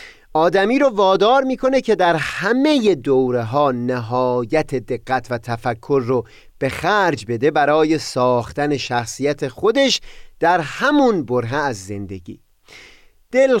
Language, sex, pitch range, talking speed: Persian, male, 125-195 Hz, 120 wpm